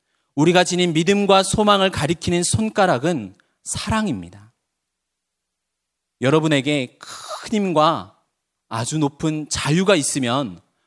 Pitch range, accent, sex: 120-175 Hz, native, male